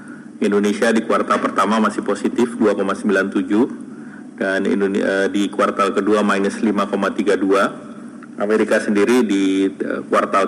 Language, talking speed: Indonesian, 95 wpm